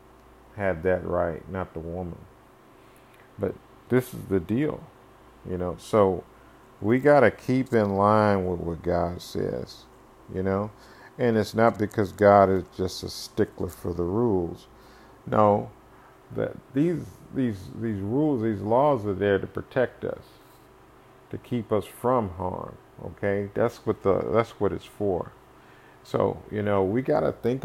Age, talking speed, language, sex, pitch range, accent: 50-69, 155 wpm, English, male, 95-115 Hz, American